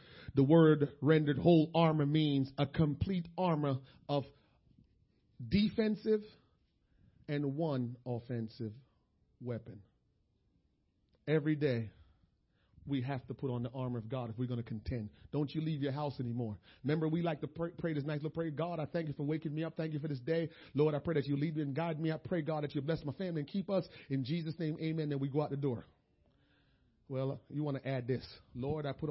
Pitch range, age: 130-170 Hz, 40-59